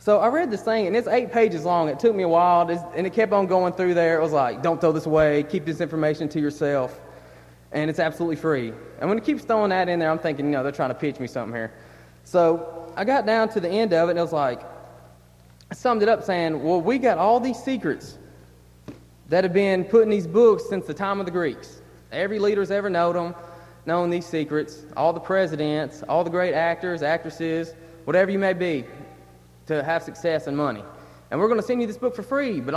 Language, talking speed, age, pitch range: English, 235 wpm, 30-49, 155-225 Hz